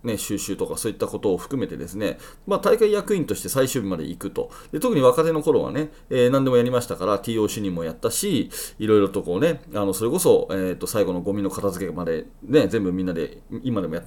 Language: Japanese